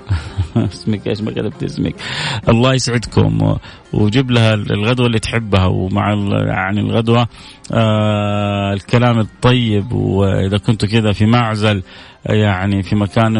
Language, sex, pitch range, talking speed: Arabic, male, 100-120 Hz, 110 wpm